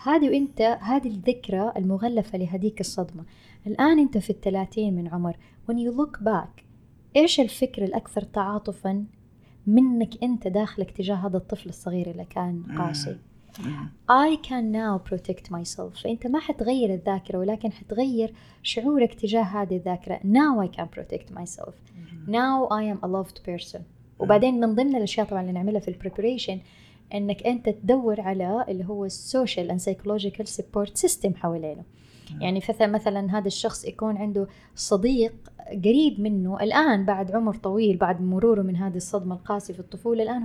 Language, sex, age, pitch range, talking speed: Arabic, female, 20-39, 185-230 Hz, 145 wpm